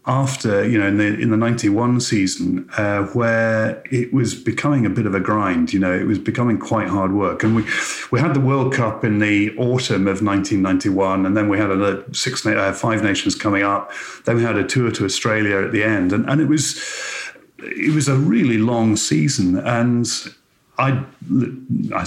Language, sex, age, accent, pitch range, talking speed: English, male, 30-49, British, 100-125 Hz, 200 wpm